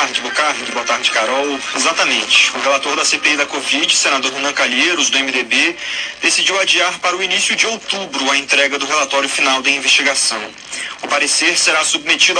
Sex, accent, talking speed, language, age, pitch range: male, Brazilian, 180 wpm, Portuguese, 30-49, 140-180 Hz